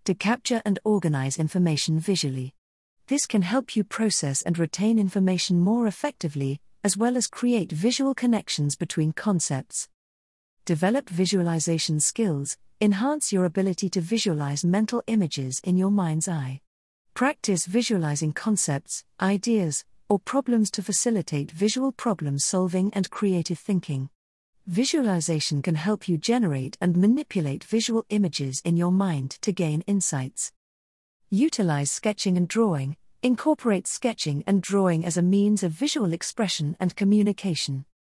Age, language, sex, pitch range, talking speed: 50-69, English, female, 155-215 Hz, 130 wpm